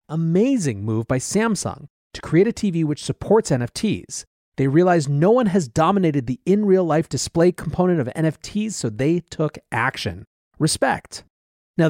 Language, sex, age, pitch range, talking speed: English, male, 30-49, 125-180 Hz, 145 wpm